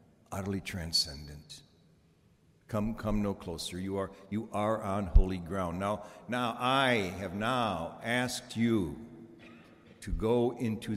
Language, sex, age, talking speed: English, male, 60-79, 125 wpm